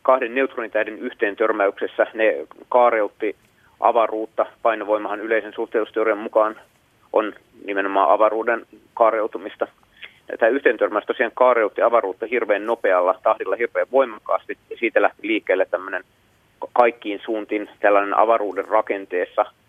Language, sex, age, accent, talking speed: Finnish, male, 30-49, native, 105 wpm